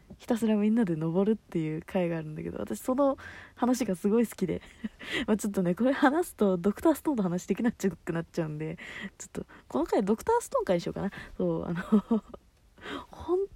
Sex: female